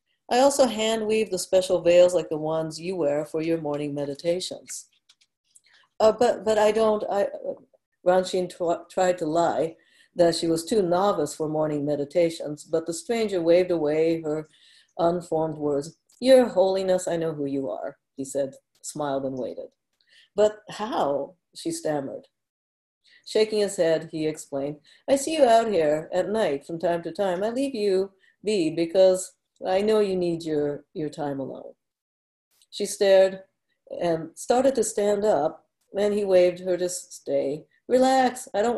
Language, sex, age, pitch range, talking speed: English, female, 50-69, 155-205 Hz, 160 wpm